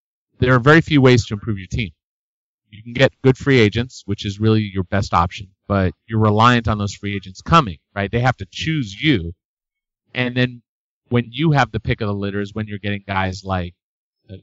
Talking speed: 215 wpm